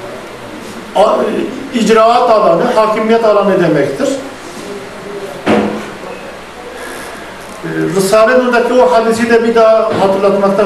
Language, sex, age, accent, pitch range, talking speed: Turkish, male, 50-69, native, 205-250 Hz, 80 wpm